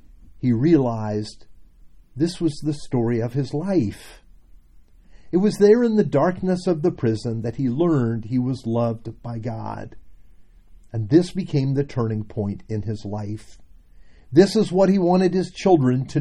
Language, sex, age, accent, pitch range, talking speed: English, male, 50-69, American, 105-150 Hz, 160 wpm